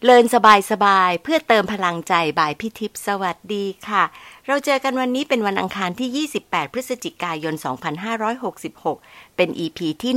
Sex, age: female, 60-79